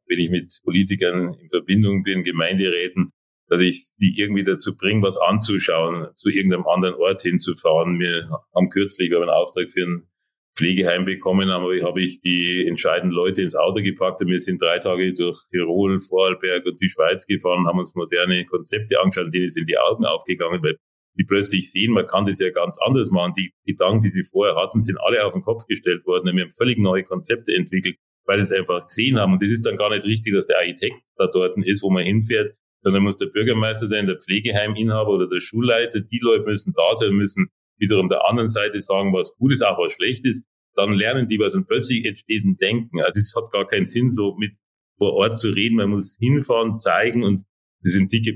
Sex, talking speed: male, 215 wpm